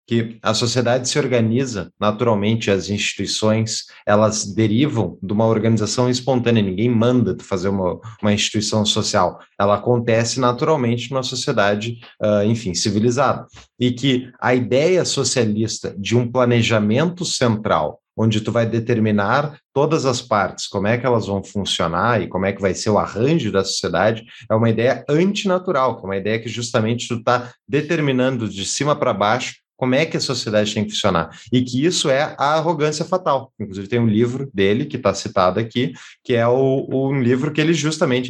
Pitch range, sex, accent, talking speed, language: 105-130 Hz, male, Brazilian, 175 wpm, Portuguese